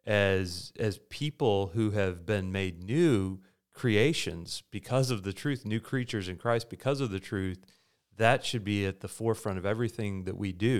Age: 30-49